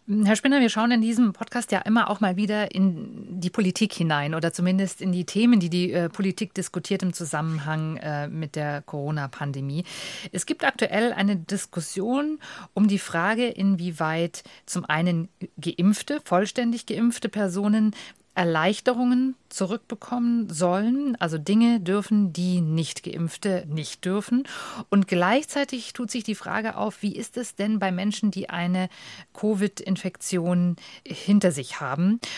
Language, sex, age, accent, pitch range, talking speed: German, female, 50-69, German, 175-225 Hz, 140 wpm